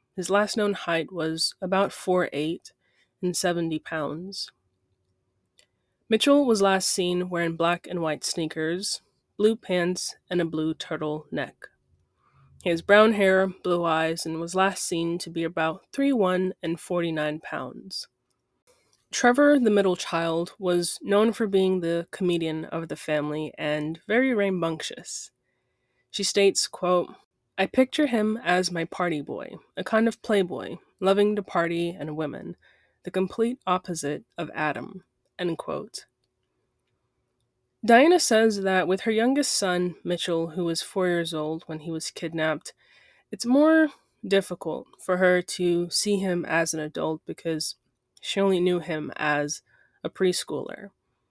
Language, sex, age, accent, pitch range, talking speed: English, female, 20-39, American, 160-195 Hz, 140 wpm